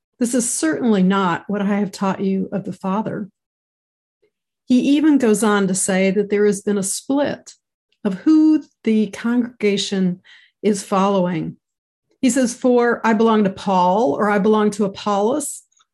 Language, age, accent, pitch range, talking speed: English, 50-69, American, 190-245 Hz, 160 wpm